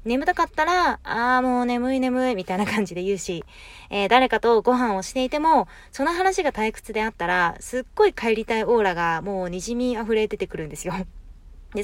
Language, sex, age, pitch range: Japanese, female, 20-39, 195-290 Hz